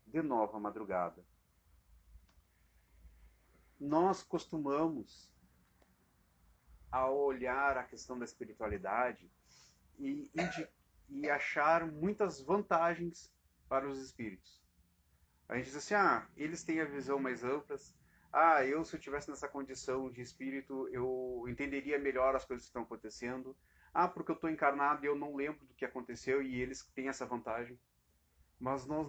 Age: 30-49